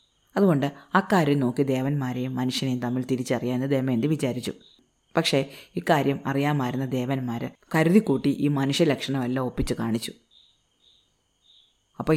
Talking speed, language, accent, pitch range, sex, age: 100 wpm, Malayalam, native, 125-145 Hz, female, 30-49